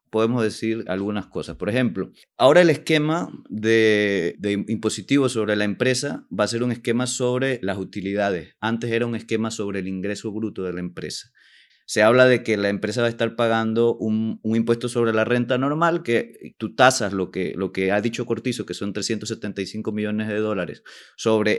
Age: 30-49